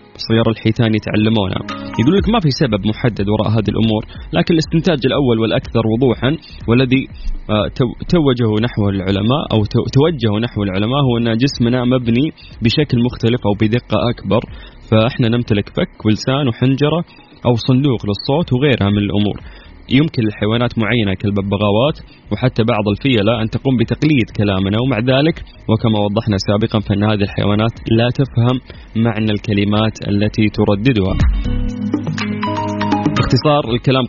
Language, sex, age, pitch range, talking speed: Arabic, male, 20-39, 105-130 Hz, 125 wpm